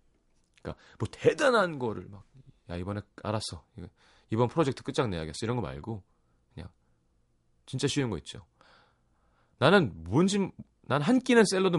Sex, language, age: male, Korean, 30-49